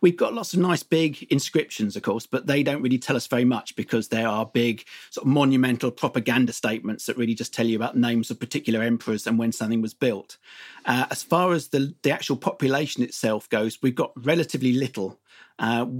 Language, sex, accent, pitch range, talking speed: English, male, British, 120-145 Hz, 210 wpm